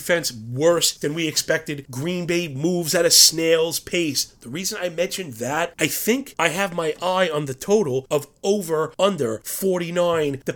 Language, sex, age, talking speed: English, male, 30-49, 175 wpm